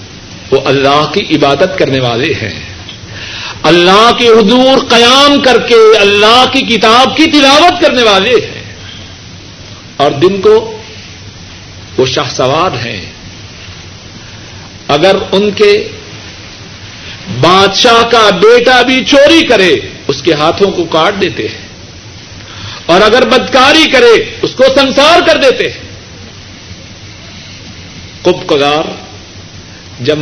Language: Urdu